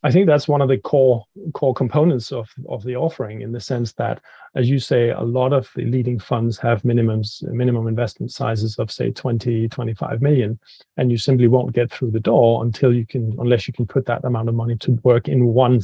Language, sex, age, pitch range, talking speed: English, male, 30-49, 115-135 Hz, 225 wpm